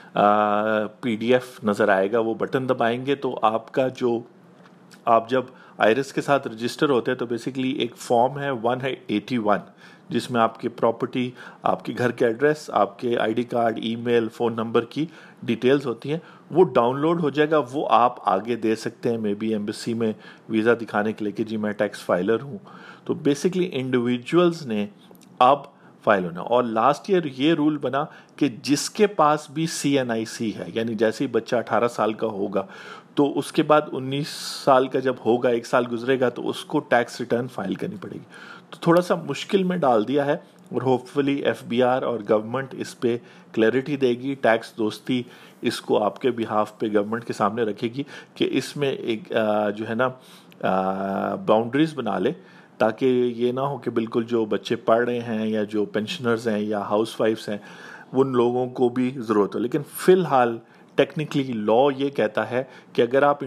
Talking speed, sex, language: 190 wpm, male, Urdu